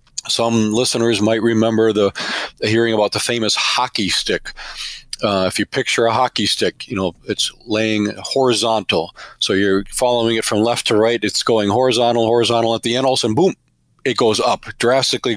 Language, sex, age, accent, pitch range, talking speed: English, male, 40-59, American, 110-125 Hz, 175 wpm